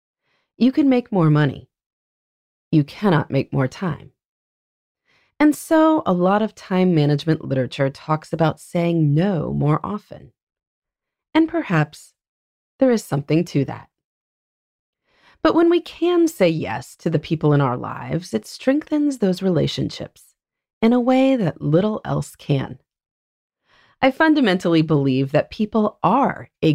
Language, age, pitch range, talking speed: English, 30-49, 145-215 Hz, 135 wpm